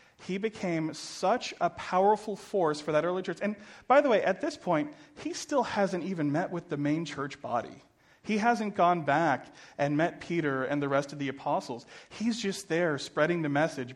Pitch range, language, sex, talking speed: 135-175 Hz, English, male, 200 wpm